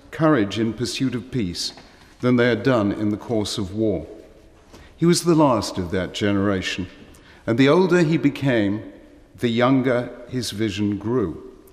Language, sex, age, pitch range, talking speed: English, male, 50-69, 115-145 Hz, 160 wpm